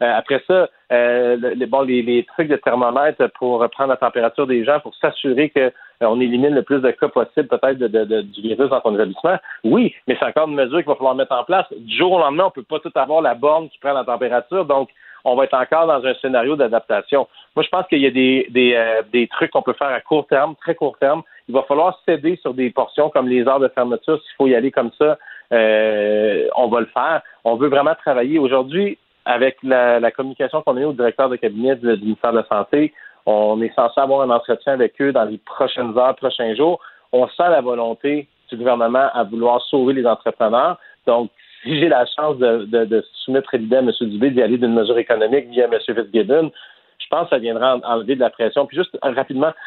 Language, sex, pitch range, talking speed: French, male, 120-150 Hz, 240 wpm